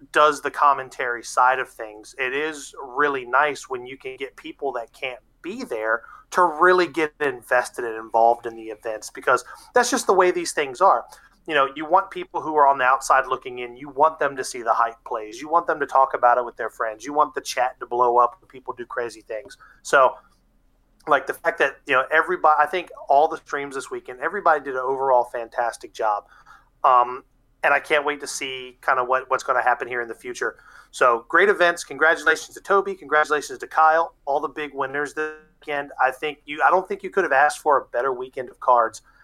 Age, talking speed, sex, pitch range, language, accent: 30-49, 225 wpm, male, 130-175 Hz, English, American